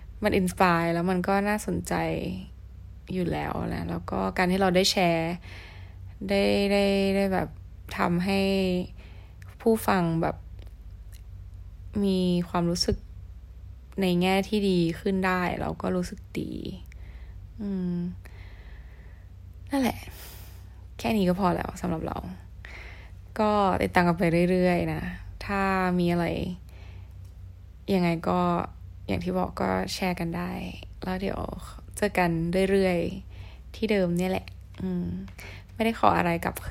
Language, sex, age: Thai, female, 20-39